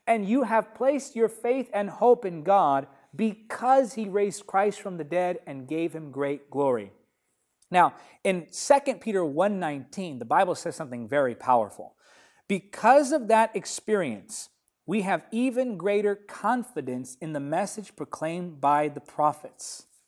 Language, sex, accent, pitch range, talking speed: English, male, American, 165-230 Hz, 145 wpm